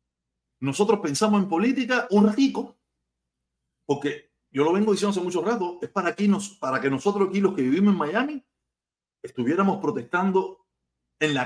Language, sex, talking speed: Spanish, male, 160 wpm